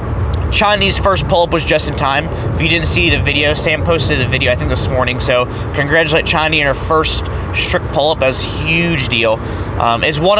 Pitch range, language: 110-155 Hz, English